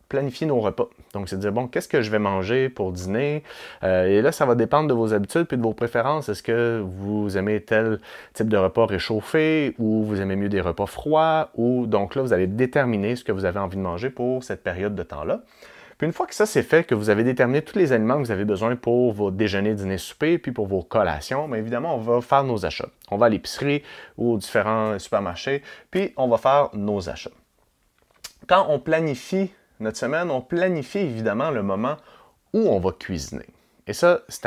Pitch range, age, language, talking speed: 105-135 Hz, 30-49, French, 225 wpm